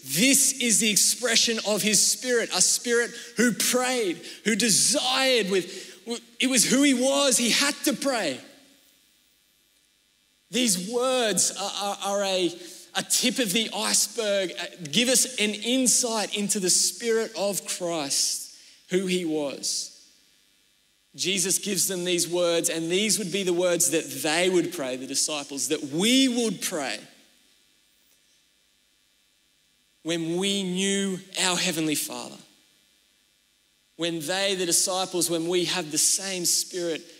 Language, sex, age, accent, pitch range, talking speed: English, male, 20-39, Australian, 180-235 Hz, 135 wpm